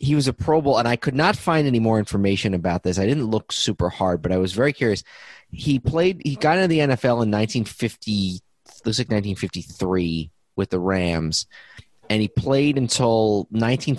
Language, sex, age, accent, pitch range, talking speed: English, male, 30-49, American, 105-140 Hz, 205 wpm